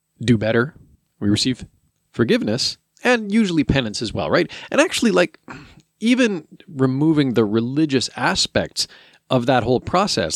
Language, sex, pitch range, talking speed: English, male, 115-165 Hz, 135 wpm